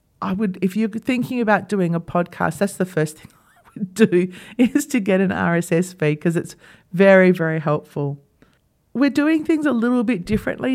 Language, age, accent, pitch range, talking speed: English, 40-59, Australian, 175-215 Hz, 190 wpm